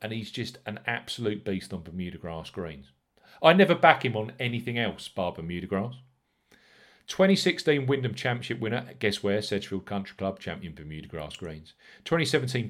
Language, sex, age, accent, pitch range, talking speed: English, male, 40-59, British, 95-130 Hz, 160 wpm